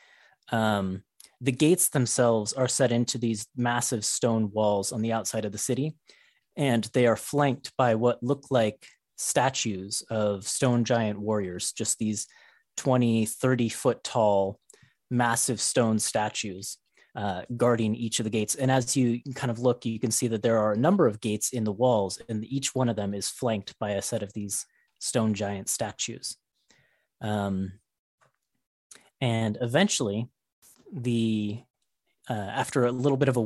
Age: 30-49